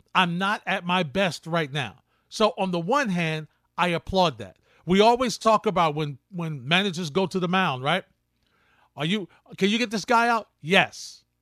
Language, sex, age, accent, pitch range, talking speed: English, male, 40-59, American, 150-205 Hz, 190 wpm